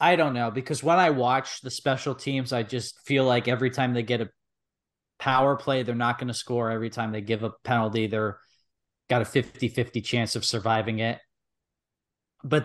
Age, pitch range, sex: 20-39, 115-145 Hz, male